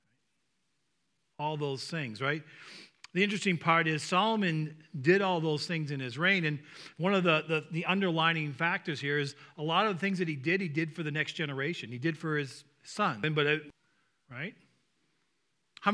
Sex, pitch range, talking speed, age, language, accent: male, 145-180 Hz, 185 wpm, 40-59, English, American